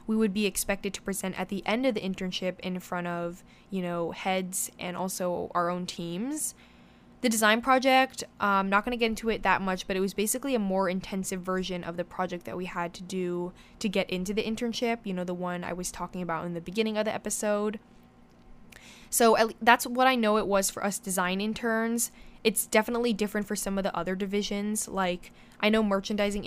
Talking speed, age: 215 wpm, 10-29